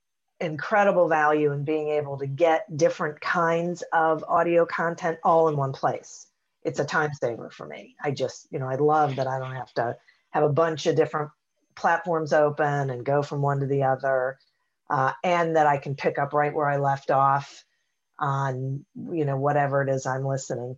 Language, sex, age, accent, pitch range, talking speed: English, female, 40-59, American, 140-180 Hz, 195 wpm